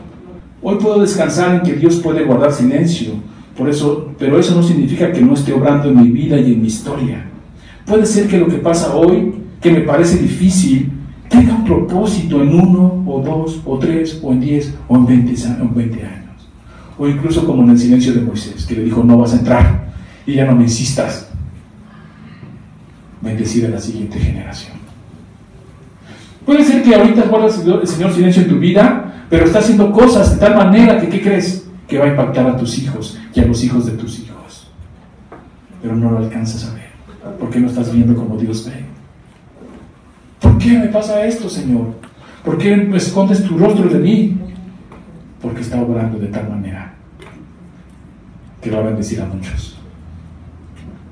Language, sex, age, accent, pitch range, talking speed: Spanish, male, 40-59, Mexican, 115-180 Hz, 180 wpm